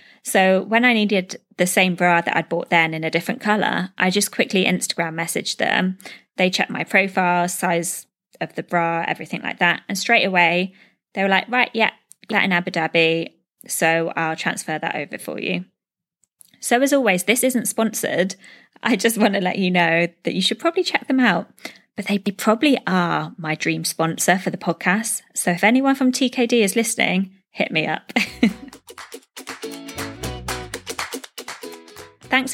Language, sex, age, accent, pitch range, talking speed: English, female, 20-39, British, 175-220 Hz, 170 wpm